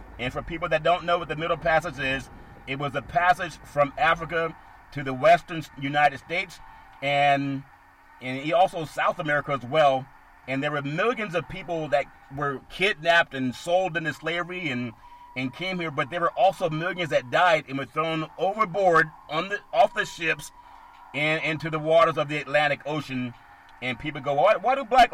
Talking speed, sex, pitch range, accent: 185 wpm, male, 135-175 Hz, American